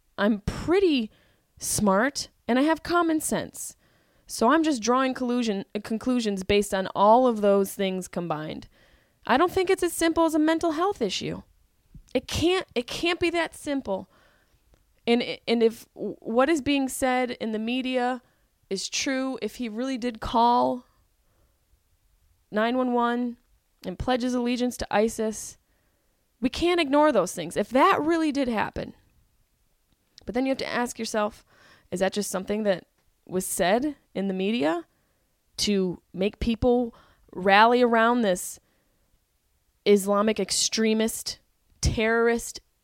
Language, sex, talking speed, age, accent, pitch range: English, female, 140 wpm, 20-39, American, 205-260 Hz